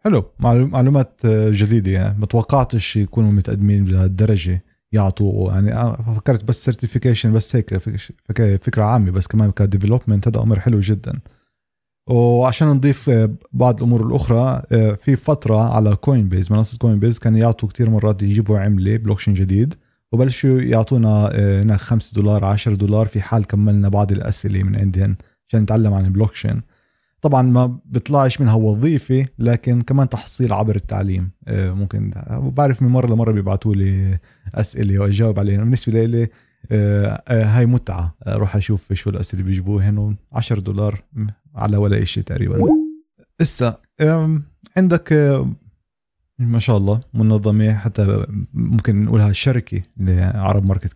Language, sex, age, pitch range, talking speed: Arabic, male, 30-49, 100-120 Hz, 135 wpm